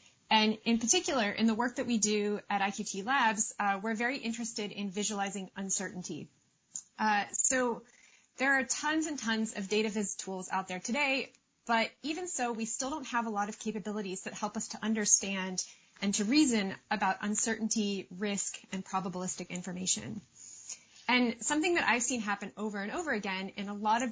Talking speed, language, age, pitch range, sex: 180 wpm, English, 30-49, 195-240 Hz, female